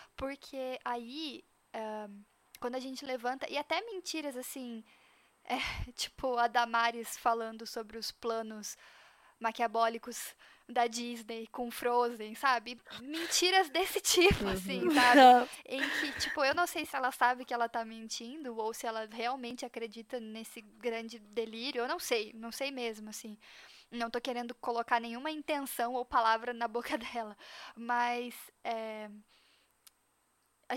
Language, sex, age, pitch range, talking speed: Portuguese, female, 10-29, 230-270 Hz, 140 wpm